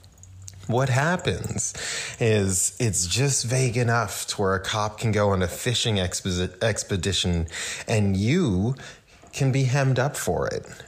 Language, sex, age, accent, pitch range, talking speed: English, male, 30-49, American, 95-130 Hz, 145 wpm